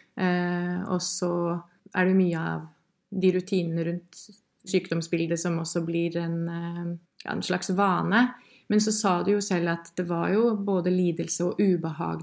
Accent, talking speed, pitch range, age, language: Swedish, 155 wpm, 175-205 Hz, 20-39, English